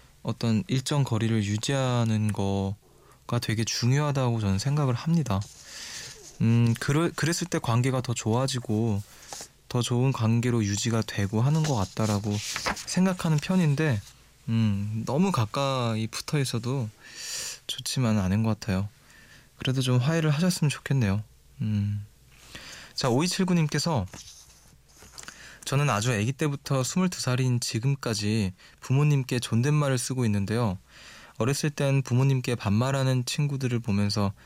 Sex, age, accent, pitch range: male, 20-39, native, 110-140 Hz